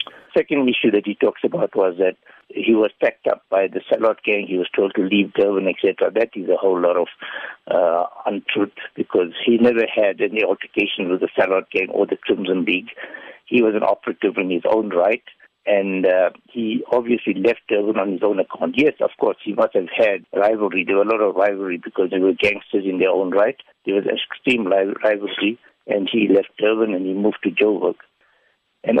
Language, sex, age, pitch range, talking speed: English, male, 60-79, 95-115 Hz, 205 wpm